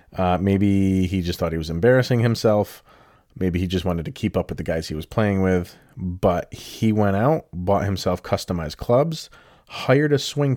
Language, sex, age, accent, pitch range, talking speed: English, male, 30-49, American, 90-110 Hz, 195 wpm